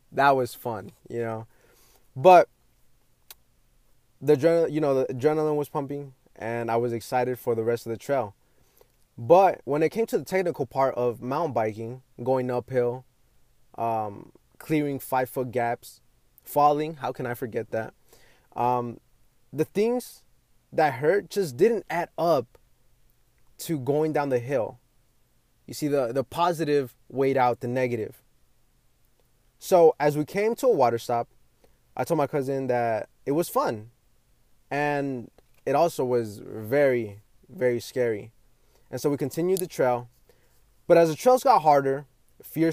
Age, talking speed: 20-39, 150 wpm